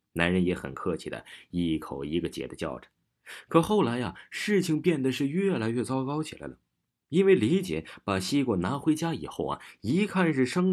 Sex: male